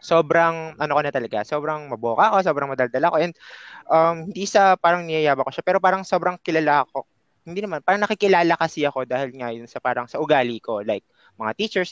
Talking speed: 205 wpm